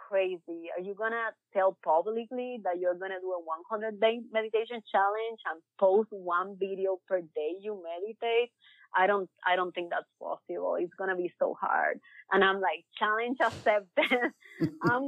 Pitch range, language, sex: 180-225 Hz, English, female